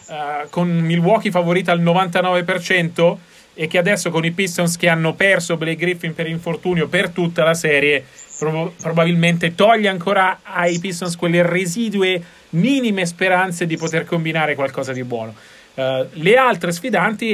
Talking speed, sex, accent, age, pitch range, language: 140 wpm, male, native, 30-49, 155-185 Hz, Italian